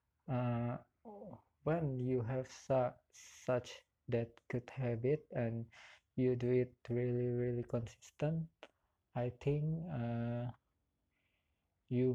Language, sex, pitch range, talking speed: English, male, 105-125 Hz, 100 wpm